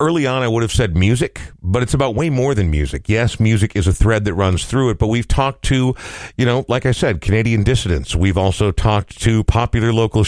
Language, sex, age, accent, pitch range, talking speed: English, male, 50-69, American, 90-115 Hz, 235 wpm